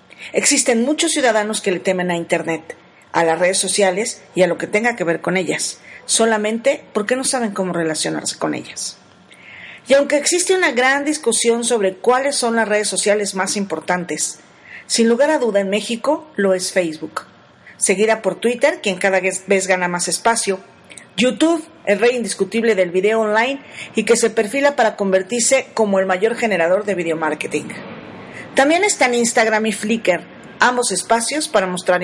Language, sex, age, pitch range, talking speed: Spanish, female, 40-59, 185-235 Hz, 170 wpm